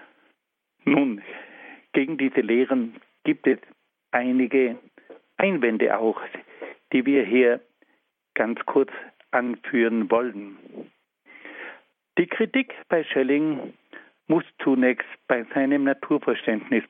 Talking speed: 90 wpm